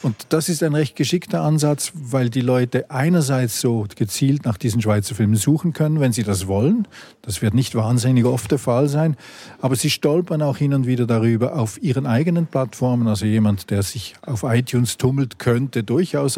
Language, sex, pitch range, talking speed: German, male, 115-145 Hz, 190 wpm